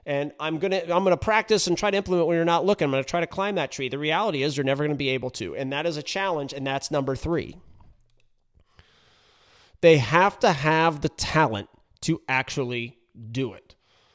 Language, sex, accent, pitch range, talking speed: English, male, American, 135-175 Hz, 210 wpm